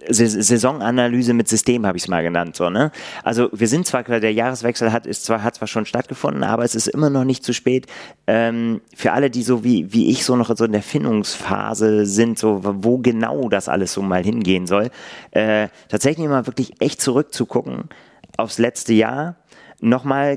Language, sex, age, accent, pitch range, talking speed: German, male, 30-49, German, 105-125 Hz, 190 wpm